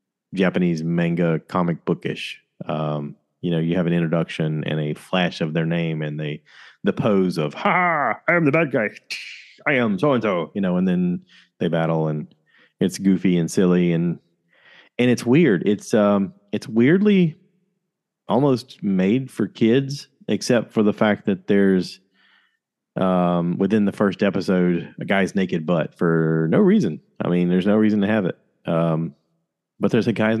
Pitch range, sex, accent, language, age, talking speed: 85-110 Hz, male, American, English, 30-49, 170 wpm